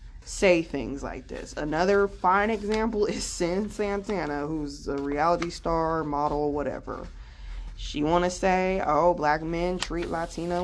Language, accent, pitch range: English, American, 145-180 Hz